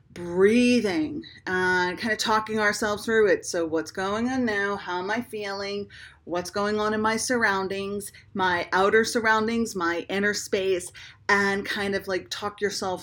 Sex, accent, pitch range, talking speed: female, American, 185-220 Hz, 160 wpm